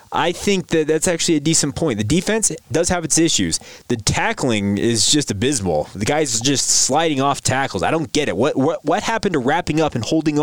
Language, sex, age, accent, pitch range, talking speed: English, male, 20-39, American, 120-160 Hz, 225 wpm